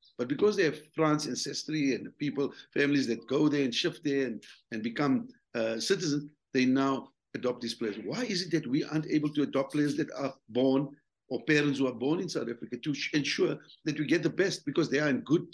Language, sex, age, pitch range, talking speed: English, male, 50-69, 120-155 Hz, 225 wpm